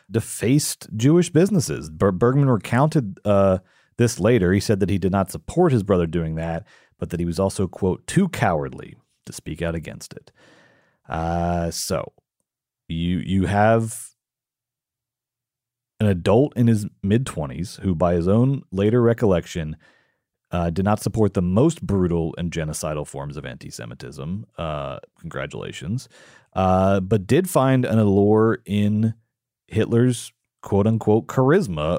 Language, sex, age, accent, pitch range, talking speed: English, male, 30-49, American, 90-120 Hz, 135 wpm